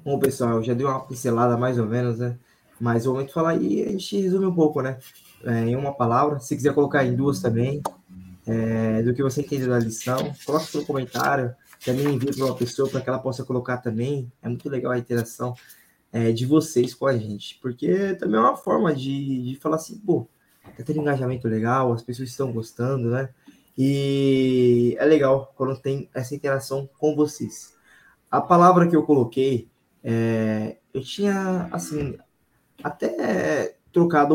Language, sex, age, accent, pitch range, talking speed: Portuguese, male, 20-39, Brazilian, 120-150 Hz, 180 wpm